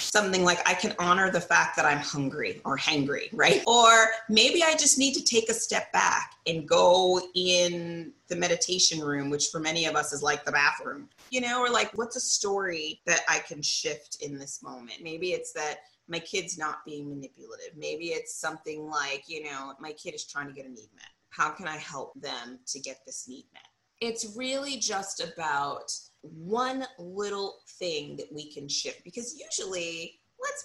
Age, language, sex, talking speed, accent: 30-49, English, female, 195 wpm, American